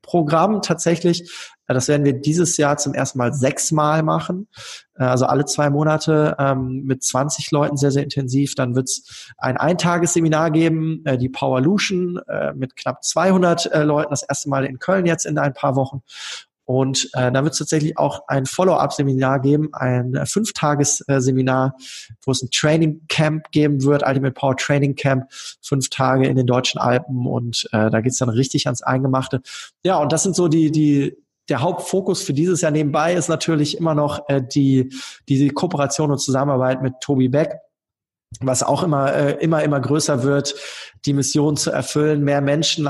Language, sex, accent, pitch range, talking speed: German, male, German, 130-155 Hz, 175 wpm